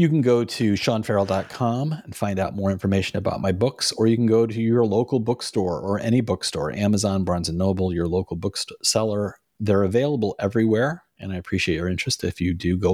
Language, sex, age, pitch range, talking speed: English, male, 40-59, 100-125 Hz, 210 wpm